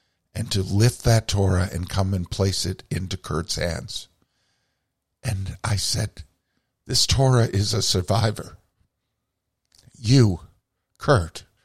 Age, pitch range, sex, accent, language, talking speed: 50-69, 90-115 Hz, male, American, English, 120 wpm